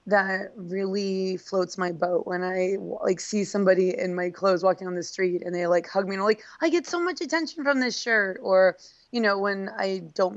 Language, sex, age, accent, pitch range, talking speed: English, female, 20-39, American, 180-205 Hz, 220 wpm